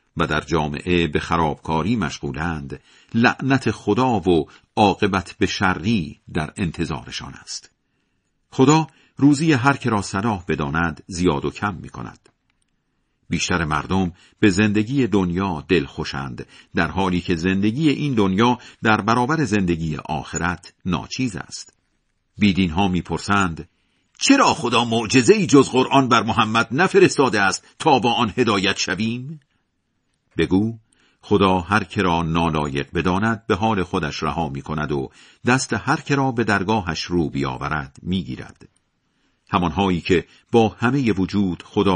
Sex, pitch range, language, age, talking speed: male, 85-120 Hz, Persian, 50-69, 125 wpm